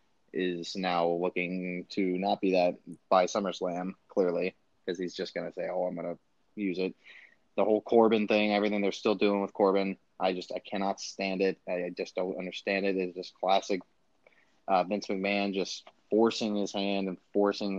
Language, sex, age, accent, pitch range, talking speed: English, male, 20-39, American, 90-100 Hz, 185 wpm